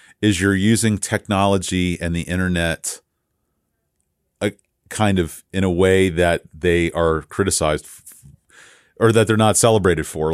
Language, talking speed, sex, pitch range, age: English, 140 wpm, male, 85-100 Hz, 40-59